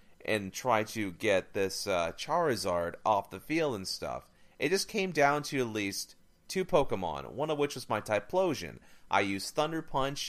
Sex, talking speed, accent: male, 180 wpm, American